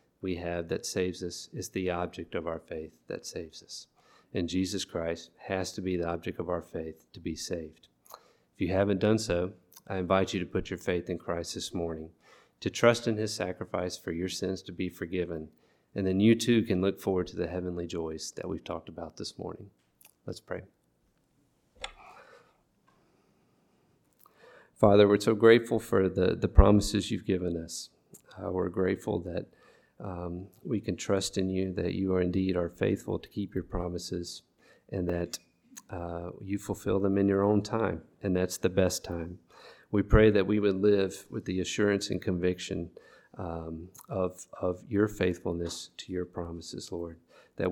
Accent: American